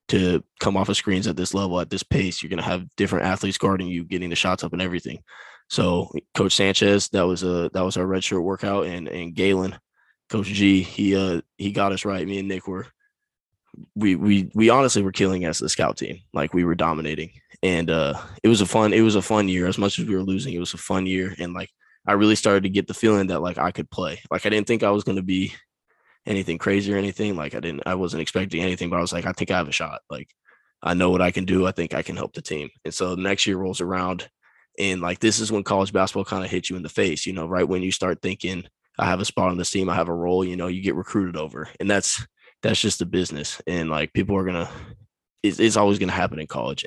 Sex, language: male, English